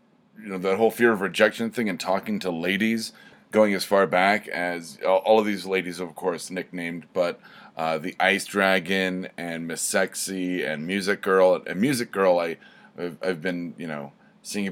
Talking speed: 180 wpm